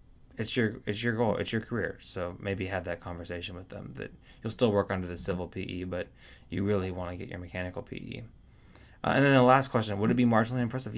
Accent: American